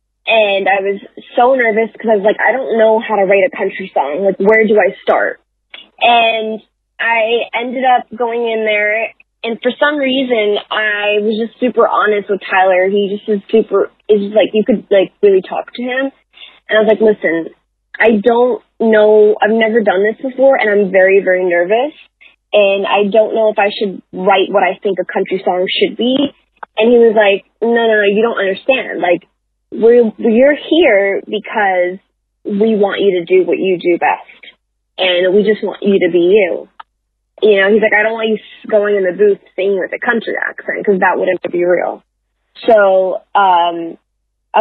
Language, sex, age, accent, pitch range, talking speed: English, female, 20-39, American, 195-235 Hz, 195 wpm